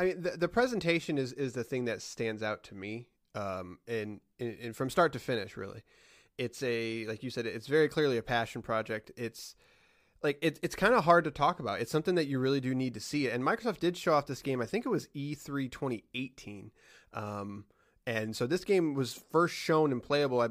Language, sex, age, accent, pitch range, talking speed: English, male, 30-49, American, 115-155 Hz, 220 wpm